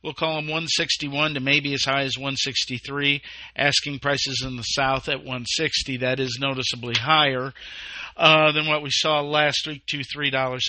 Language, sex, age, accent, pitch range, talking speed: English, male, 50-69, American, 125-155 Hz, 175 wpm